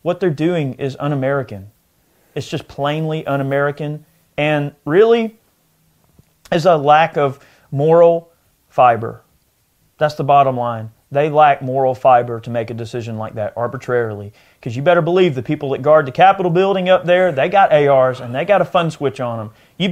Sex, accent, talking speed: male, American, 170 wpm